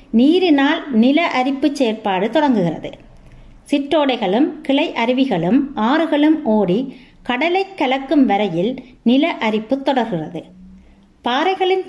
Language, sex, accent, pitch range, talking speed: Tamil, female, native, 220-290 Hz, 85 wpm